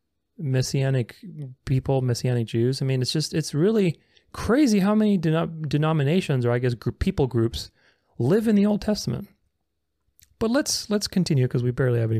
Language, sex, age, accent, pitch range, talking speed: English, male, 30-49, American, 125-175 Hz, 165 wpm